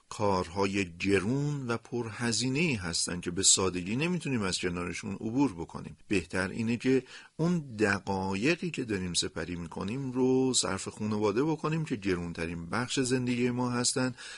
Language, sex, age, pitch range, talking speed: Persian, male, 40-59, 95-135 Hz, 135 wpm